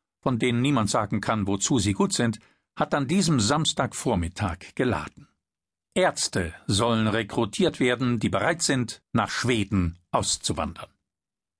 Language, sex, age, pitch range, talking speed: German, male, 50-69, 115-165 Hz, 125 wpm